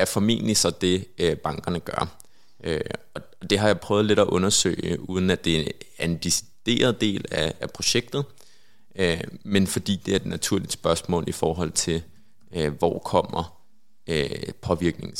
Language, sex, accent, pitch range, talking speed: Danish, male, native, 90-110 Hz, 140 wpm